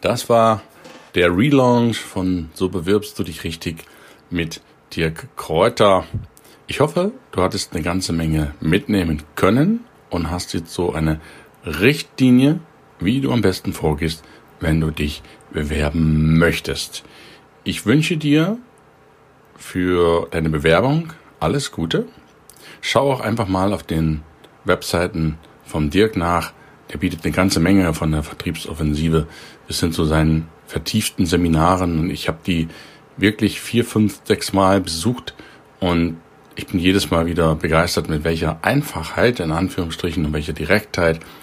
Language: German